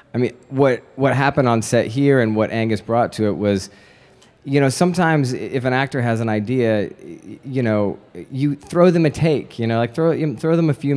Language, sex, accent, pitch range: English, male, American, 105-130 Hz